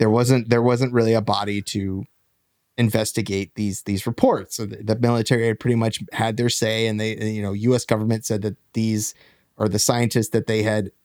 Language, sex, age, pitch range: English, male, 30-49, 110-125 Hz